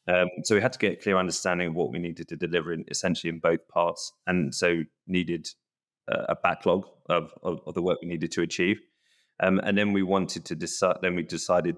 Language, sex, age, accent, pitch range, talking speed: English, male, 30-49, British, 85-90 Hz, 230 wpm